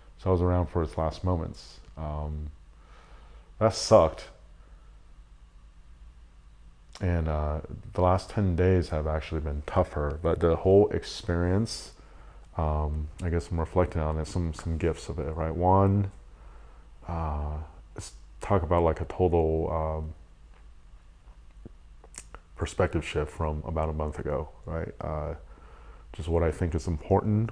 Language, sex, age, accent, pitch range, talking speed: English, male, 30-49, American, 75-90 Hz, 135 wpm